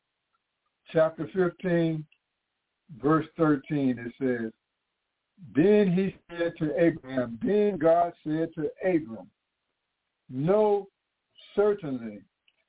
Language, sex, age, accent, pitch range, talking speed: English, male, 60-79, American, 135-175 Hz, 85 wpm